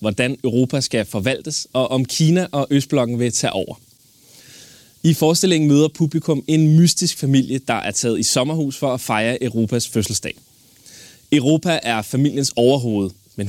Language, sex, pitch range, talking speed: Danish, male, 115-155 Hz, 150 wpm